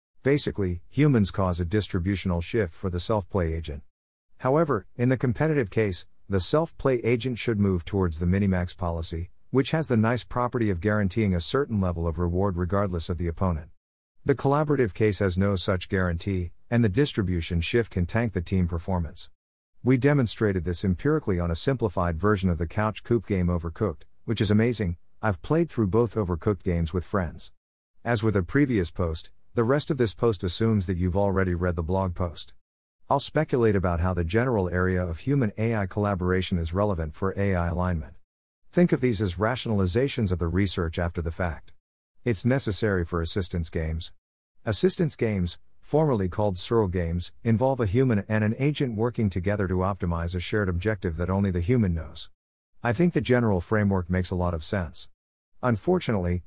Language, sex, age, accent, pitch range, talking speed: English, male, 50-69, American, 85-115 Hz, 175 wpm